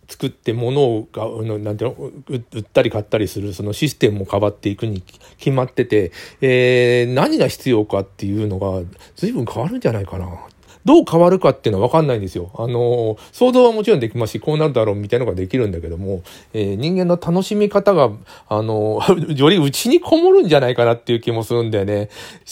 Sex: male